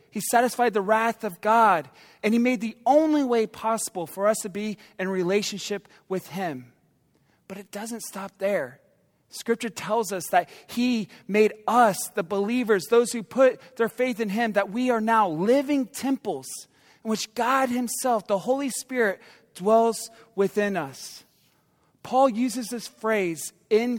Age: 30-49